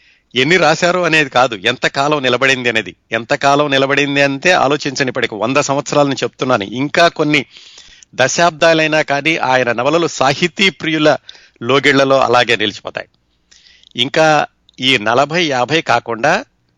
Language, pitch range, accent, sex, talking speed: Telugu, 115-150 Hz, native, male, 115 wpm